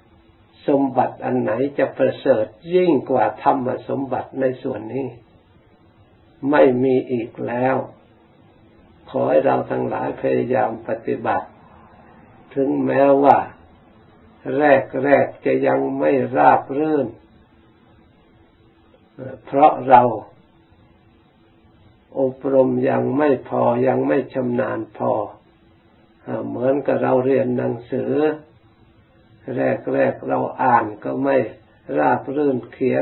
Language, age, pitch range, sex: Thai, 60-79, 110-130 Hz, male